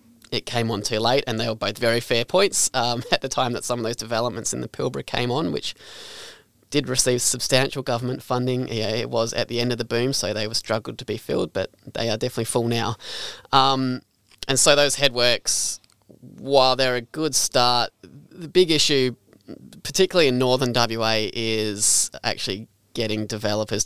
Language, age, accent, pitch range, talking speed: English, 20-39, Australian, 110-130 Hz, 190 wpm